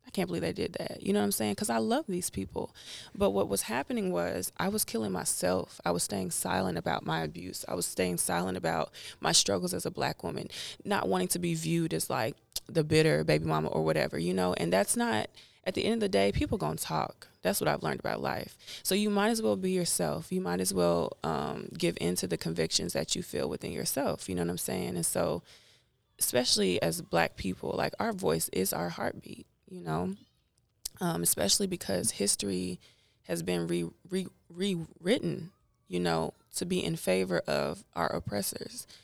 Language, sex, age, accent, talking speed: English, female, 20-39, American, 205 wpm